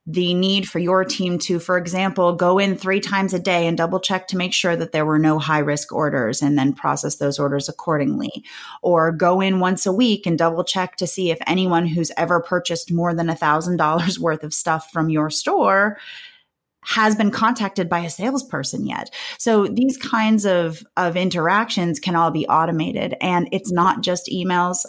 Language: English